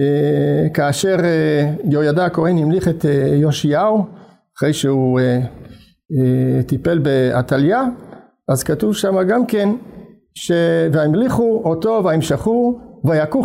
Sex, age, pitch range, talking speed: male, 50-69, 140-195 Hz, 110 wpm